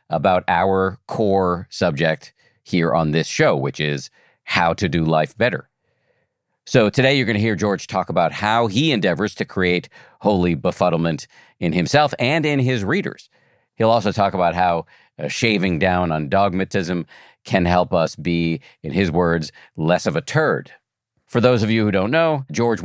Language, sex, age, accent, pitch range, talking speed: English, male, 50-69, American, 85-115 Hz, 170 wpm